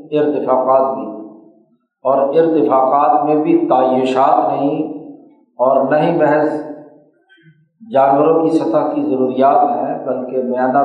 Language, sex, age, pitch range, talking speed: Urdu, male, 50-69, 130-160 Hz, 105 wpm